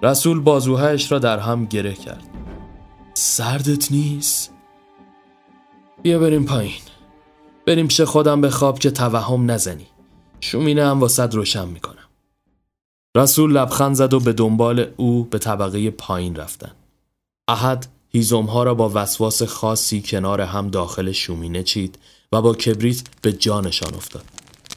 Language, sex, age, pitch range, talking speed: Persian, male, 30-49, 105-130 Hz, 130 wpm